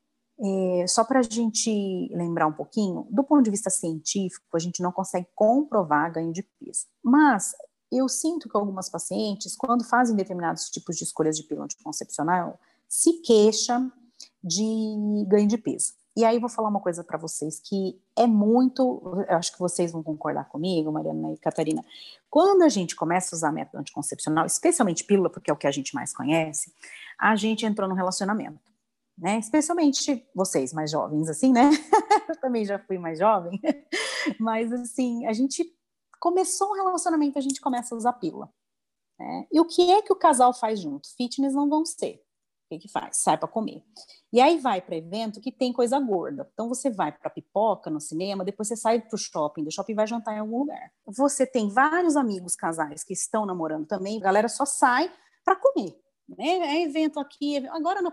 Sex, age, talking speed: female, 30-49, 190 wpm